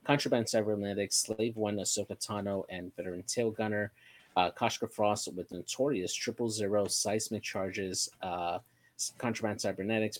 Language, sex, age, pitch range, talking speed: English, male, 30-49, 90-100 Hz, 130 wpm